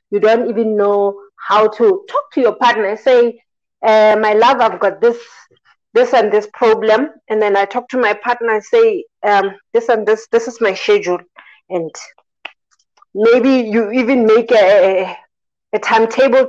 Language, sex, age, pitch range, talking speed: English, female, 30-49, 205-245 Hz, 175 wpm